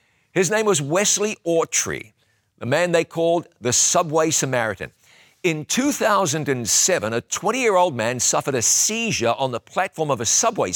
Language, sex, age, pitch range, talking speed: English, male, 50-69, 120-165 Hz, 150 wpm